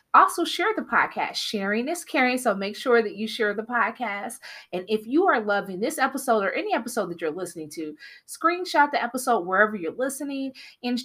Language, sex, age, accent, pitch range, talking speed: English, female, 30-49, American, 180-250 Hz, 195 wpm